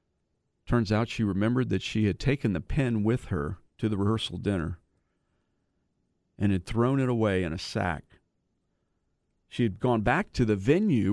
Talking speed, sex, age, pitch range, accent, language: 165 wpm, male, 50-69, 90-115 Hz, American, English